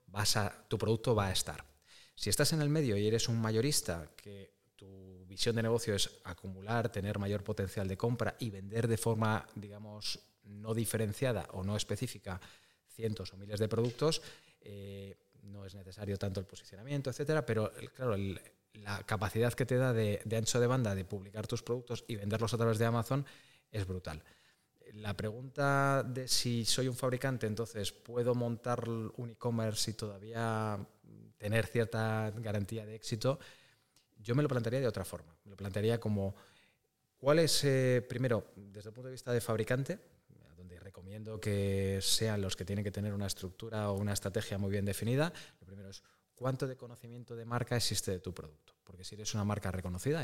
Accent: Spanish